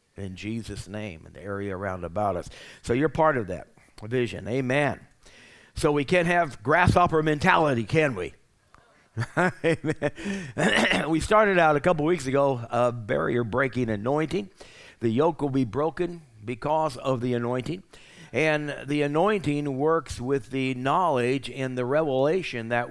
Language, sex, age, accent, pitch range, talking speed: English, male, 60-79, American, 120-155 Hz, 145 wpm